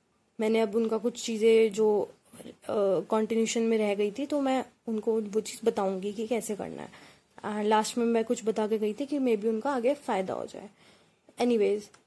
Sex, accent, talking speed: female, native, 195 wpm